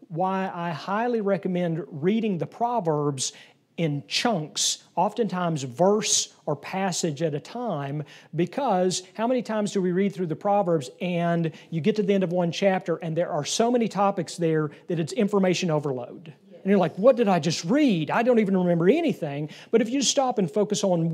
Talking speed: 185 wpm